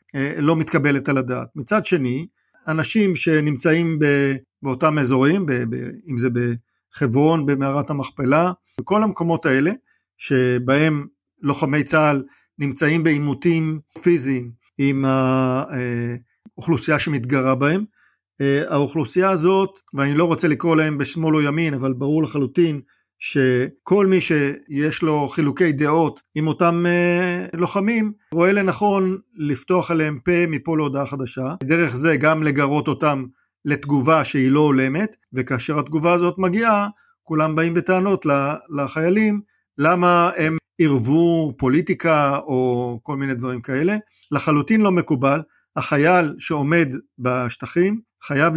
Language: Hebrew